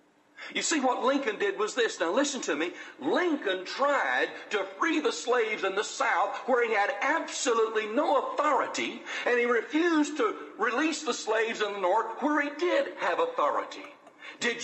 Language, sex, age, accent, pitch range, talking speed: English, male, 60-79, American, 245-315 Hz, 170 wpm